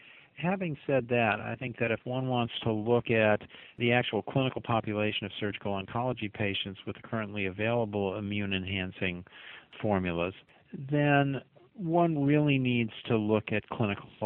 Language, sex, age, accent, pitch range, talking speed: English, male, 50-69, American, 105-125 Hz, 140 wpm